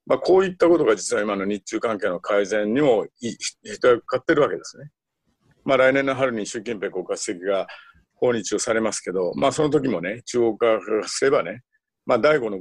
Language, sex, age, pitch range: Japanese, male, 50-69, 100-155 Hz